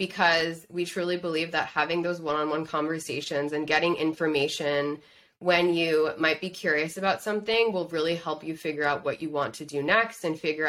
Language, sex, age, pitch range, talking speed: English, female, 20-39, 155-185 Hz, 185 wpm